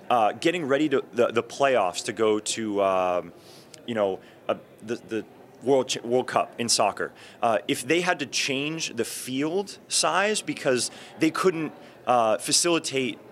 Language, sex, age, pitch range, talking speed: English, male, 30-49, 115-150 Hz, 160 wpm